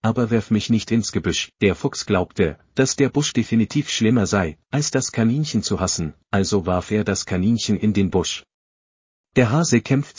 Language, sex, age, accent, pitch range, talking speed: German, male, 40-59, German, 100-120 Hz, 185 wpm